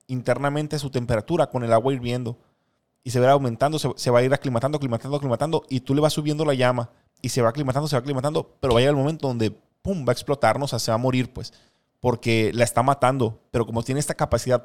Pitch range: 120-150 Hz